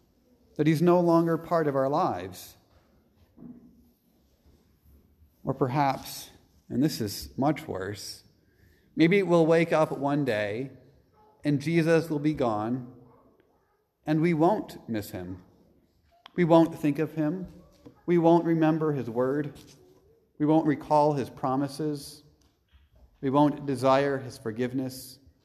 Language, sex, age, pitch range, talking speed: English, male, 40-59, 95-150 Hz, 120 wpm